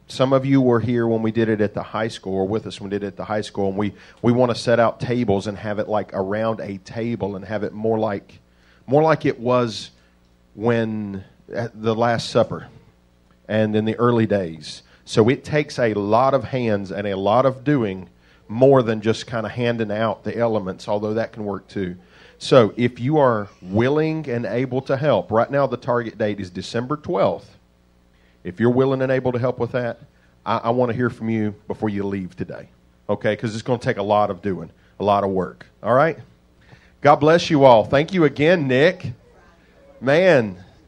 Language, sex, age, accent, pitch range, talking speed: English, male, 40-59, American, 100-125 Hz, 215 wpm